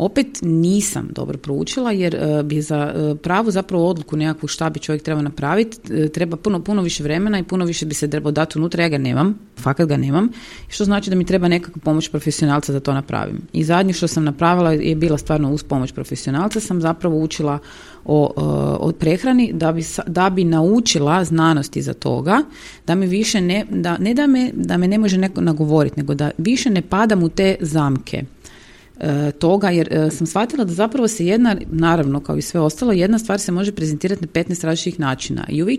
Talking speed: 205 wpm